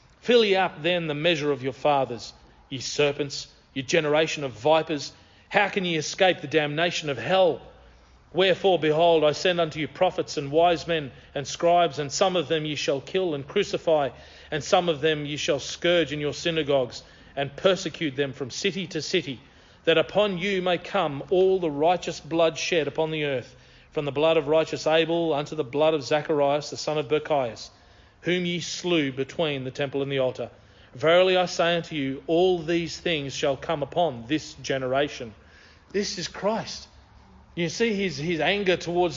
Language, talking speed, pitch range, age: English, 185 wpm, 145-180 Hz, 40-59